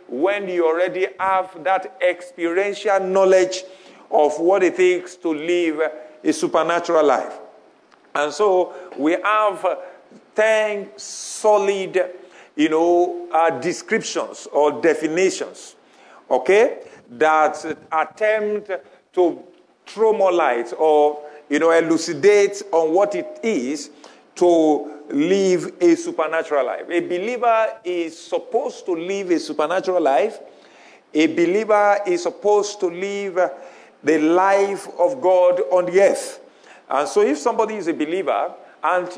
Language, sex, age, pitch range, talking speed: English, male, 50-69, 170-220 Hz, 120 wpm